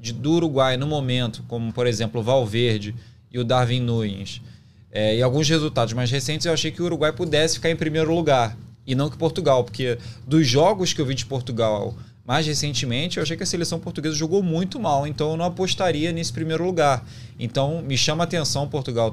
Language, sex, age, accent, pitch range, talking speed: Portuguese, male, 20-39, Brazilian, 115-150 Hz, 200 wpm